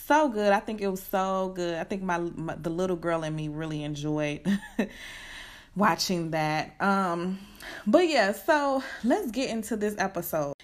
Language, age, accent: English, 20-39, American